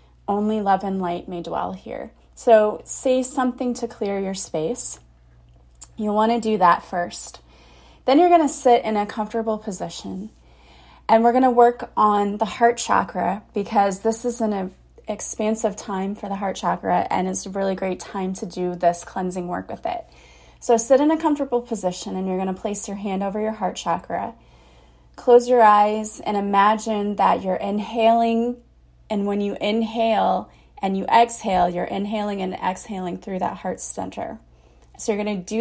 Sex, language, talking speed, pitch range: female, English, 180 wpm, 180-225 Hz